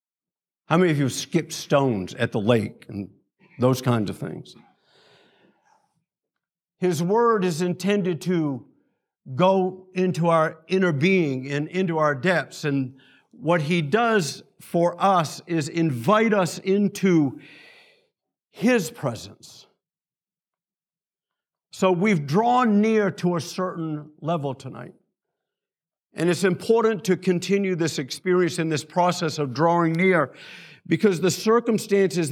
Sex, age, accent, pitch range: male, 50-69, American, 150-190 Hz